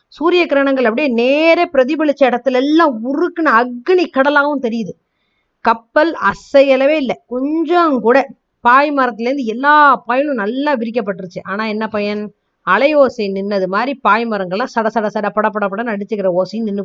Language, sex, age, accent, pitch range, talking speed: Tamil, female, 30-49, native, 200-270 Hz, 130 wpm